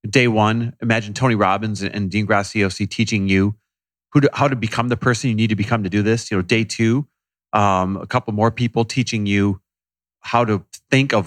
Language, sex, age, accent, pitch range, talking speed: English, male, 30-49, American, 95-125 Hz, 210 wpm